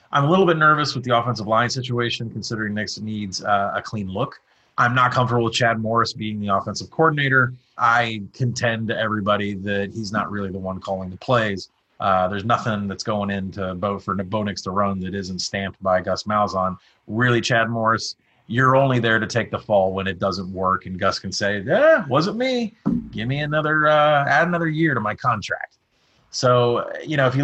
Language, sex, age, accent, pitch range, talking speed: English, male, 30-49, American, 105-130 Hz, 205 wpm